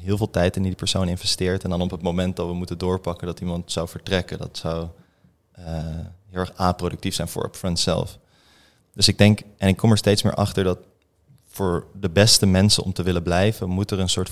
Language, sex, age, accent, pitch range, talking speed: Dutch, male, 20-39, Dutch, 85-100 Hz, 220 wpm